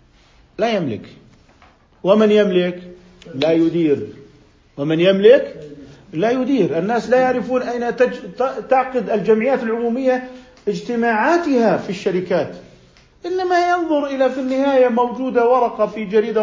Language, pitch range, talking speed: Arabic, 150-235 Hz, 115 wpm